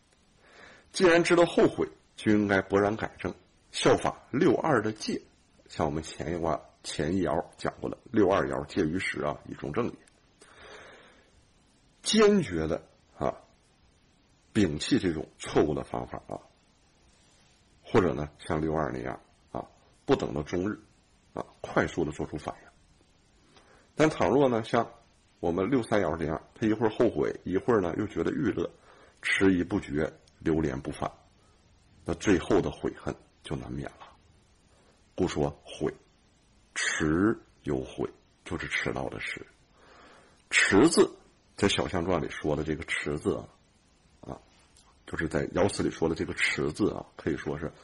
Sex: male